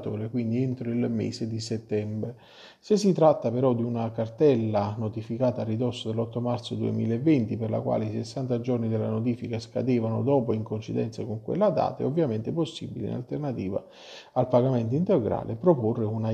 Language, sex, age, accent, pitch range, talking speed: Italian, male, 40-59, native, 110-130 Hz, 160 wpm